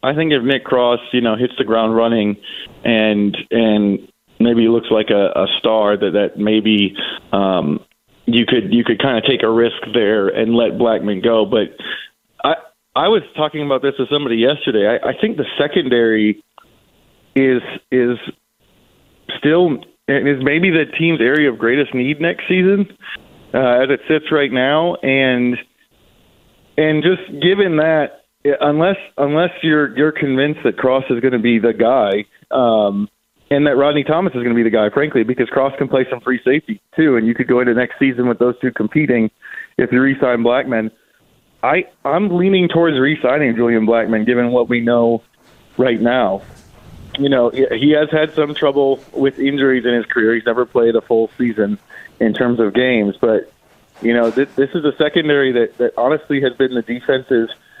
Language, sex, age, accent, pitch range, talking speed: English, male, 30-49, American, 115-145 Hz, 180 wpm